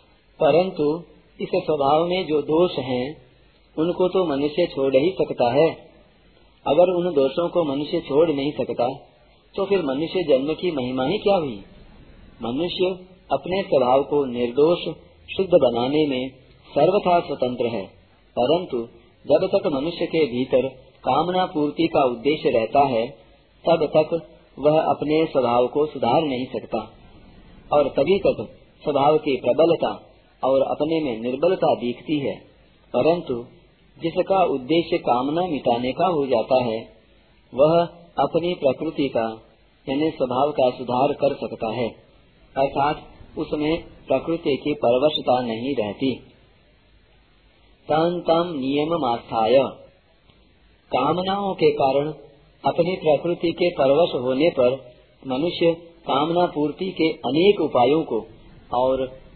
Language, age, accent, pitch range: Hindi, 40-59, native, 130-170 Hz